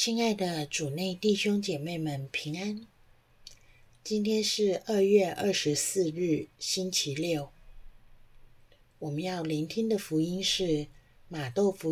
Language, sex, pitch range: Chinese, female, 120-190 Hz